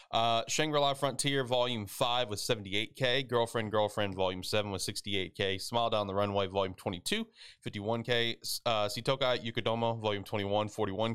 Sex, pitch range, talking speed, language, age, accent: male, 100-120 Hz, 155 wpm, English, 20-39, American